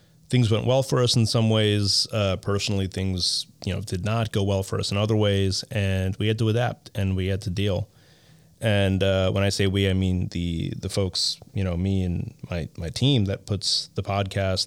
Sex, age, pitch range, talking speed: male, 30-49, 95-120 Hz, 220 wpm